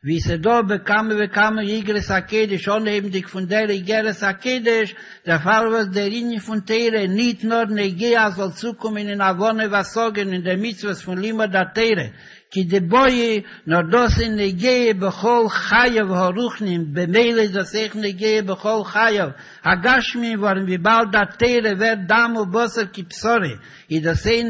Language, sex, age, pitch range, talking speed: Hebrew, male, 60-79, 195-225 Hz, 105 wpm